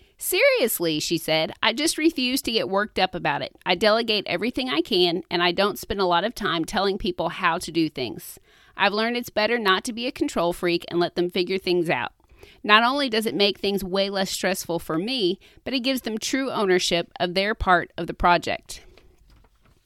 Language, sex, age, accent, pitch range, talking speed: English, female, 40-59, American, 175-235 Hz, 210 wpm